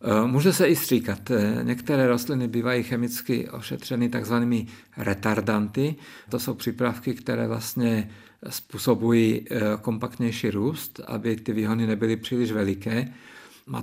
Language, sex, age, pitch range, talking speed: Czech, male, 50-69, 110-120 Hz, 115 wpm